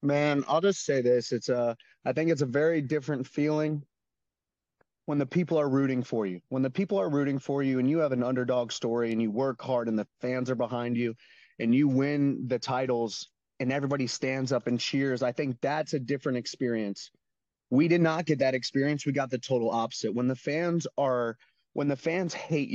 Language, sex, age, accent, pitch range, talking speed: English, male, 30-49, American, 125-150 Hz, 210 wpm